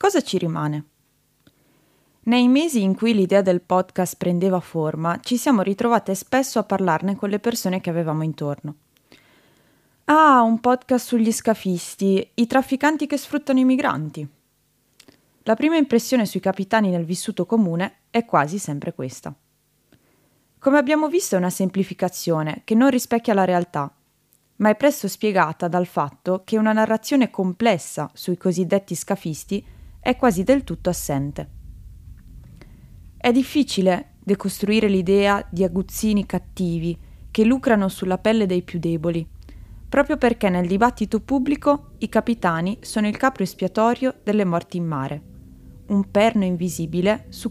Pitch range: 180-235 Hz